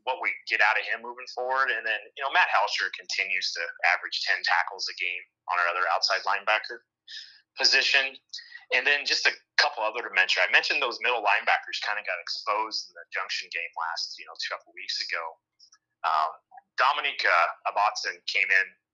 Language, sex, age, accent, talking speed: English, male, 30-49, American, 195 wpm